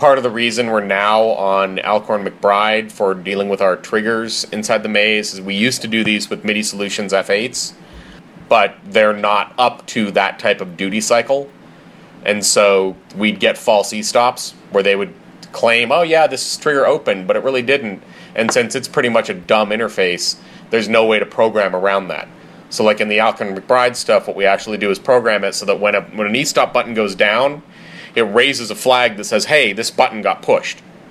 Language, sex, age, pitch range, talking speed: English, male, 30-49, 100-115 Hz, 210 wpm